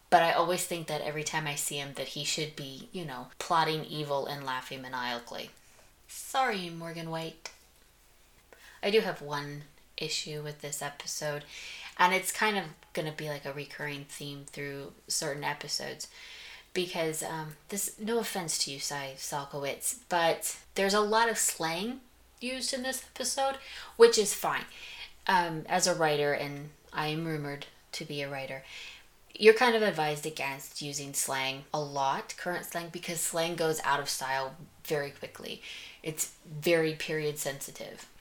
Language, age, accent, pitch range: English, 20-39, American, 145-185 Hz